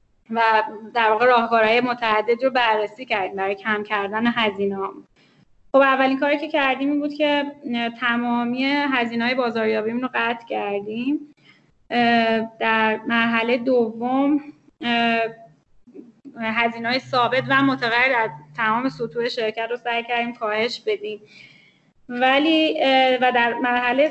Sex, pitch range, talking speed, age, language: female, 220-260 Hz, 115 wpm, 10-29, Persian